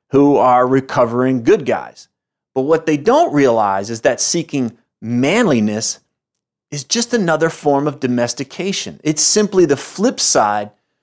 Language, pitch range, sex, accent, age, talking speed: English, 110-145 Hz, male, American, 30-49, 135 wpm